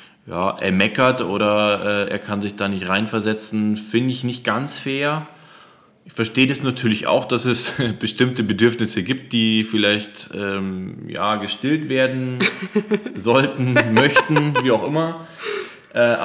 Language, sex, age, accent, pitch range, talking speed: German, male, 20-39, German, 105-125 Hz, 140 wpm